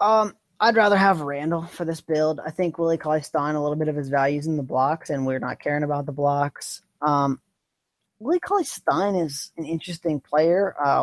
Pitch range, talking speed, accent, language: 140-180 Hz, 195 wpm, American, English